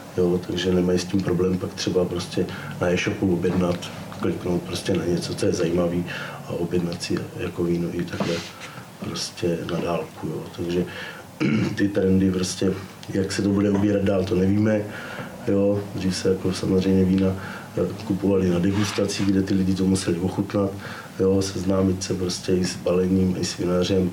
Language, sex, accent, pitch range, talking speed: English, male, Czech, 90-100 Hz, 160 wpm